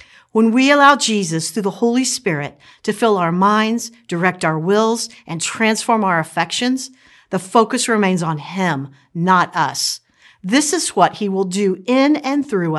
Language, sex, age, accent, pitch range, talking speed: English, female, 50-69, American, 170-235 Hz, 165 wpm